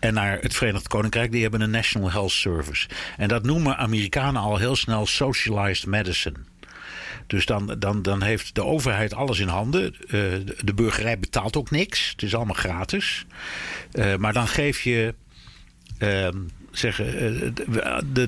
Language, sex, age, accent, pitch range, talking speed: Dutch, male, 60-79, Dutch, 100-130 Hz, 145 wpm